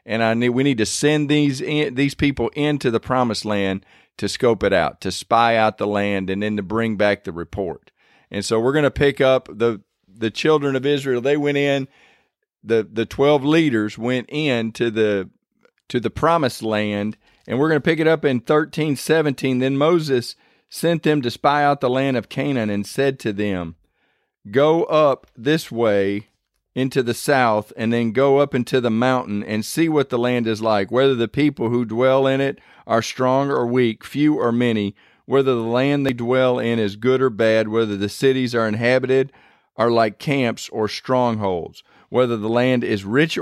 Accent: American